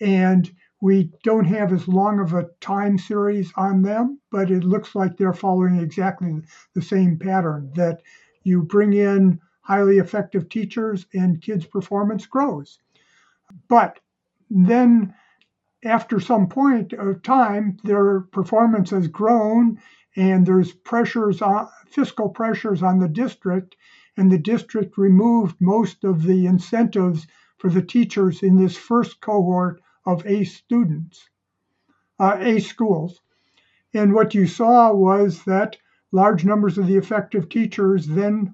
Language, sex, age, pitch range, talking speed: English, male, 50-69, 185-220 Hz, 135 wpm